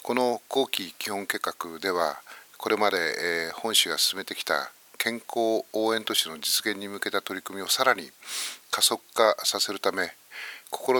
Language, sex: Japanese, male